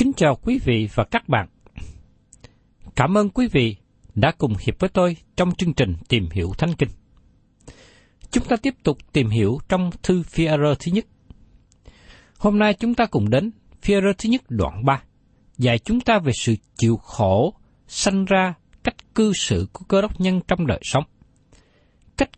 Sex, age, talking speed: male, 60-79, 175 wpm